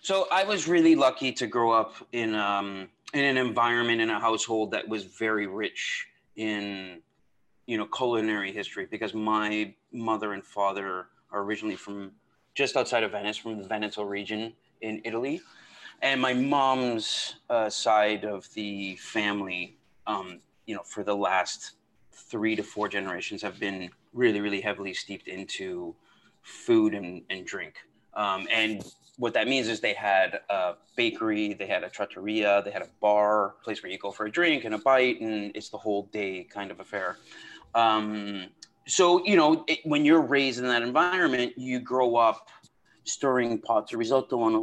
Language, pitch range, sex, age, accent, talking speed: English, 105-130 Hz, male, 30-49, American, 170 wpm